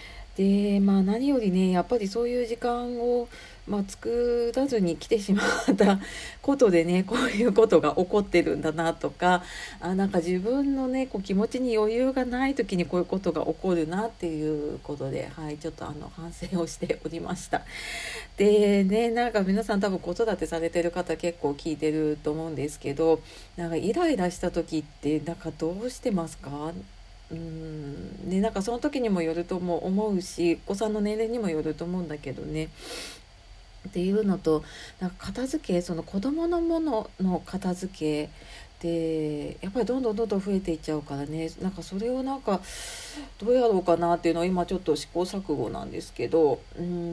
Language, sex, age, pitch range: Japanese, female, 40-59, 160-210 Hz